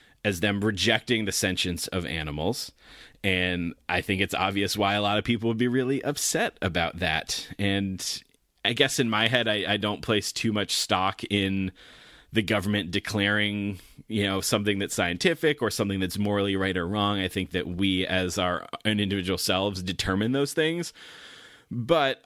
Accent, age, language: American, 30-49, English